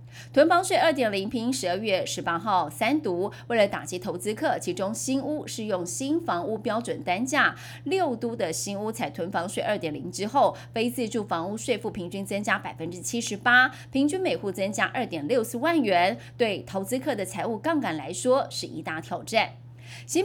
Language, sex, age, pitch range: Chinese, female, 30-49, 185-275 Hz